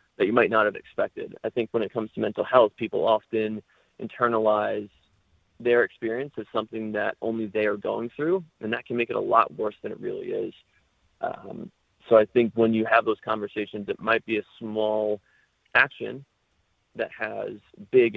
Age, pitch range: 30-49, 105-130 Hz